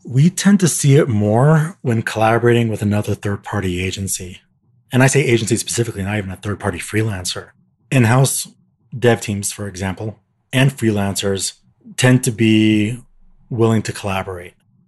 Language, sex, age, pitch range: English, male, 30-49, 100-120 Hz